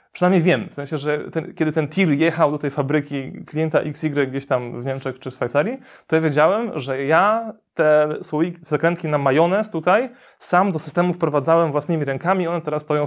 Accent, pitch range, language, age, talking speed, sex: native, 135-165 Hz, Polish, 20-39, 200 wpm, male